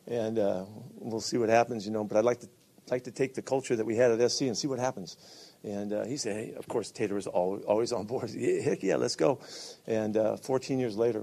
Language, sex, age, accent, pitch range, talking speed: English, male, 50-69, American, 110-140 Hz, 265 wpm